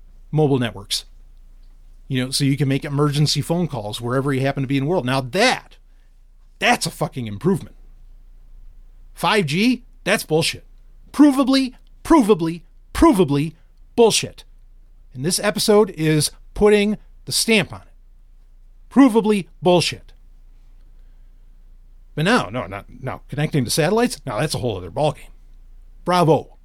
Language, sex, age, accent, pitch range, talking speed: English, male, 30-49, American, 120-185 Hz, 130 wpm